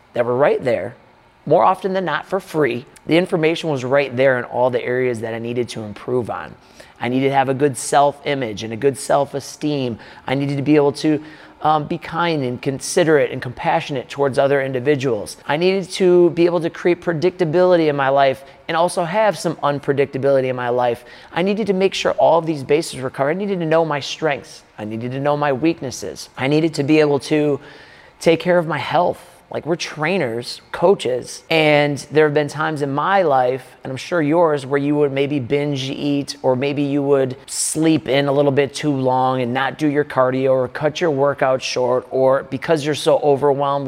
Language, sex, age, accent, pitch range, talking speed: English, male, 30-49, American, 130-160 Hz, 210 wpm